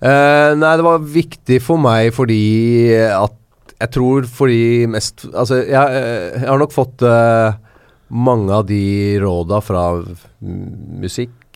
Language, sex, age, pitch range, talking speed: English, male, 30-49, 100-130 Hz, 125 wpm